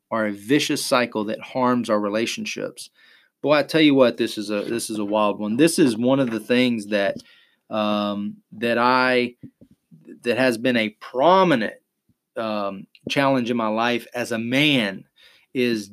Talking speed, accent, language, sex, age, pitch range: 170 wpm, American, English, male, 30-49, 115-145 Hz